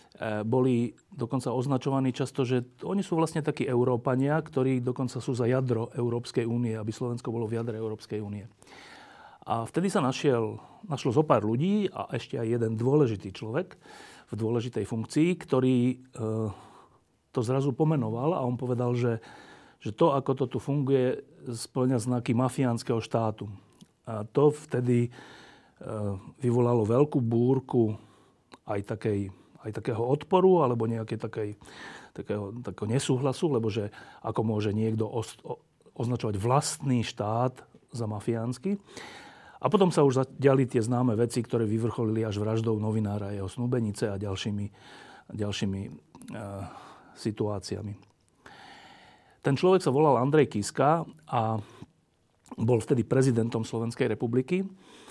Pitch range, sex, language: 110-135 Hz, male, Slovak